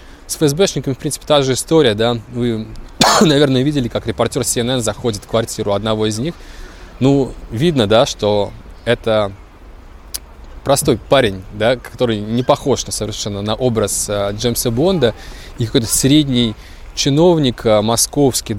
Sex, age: male, 20-39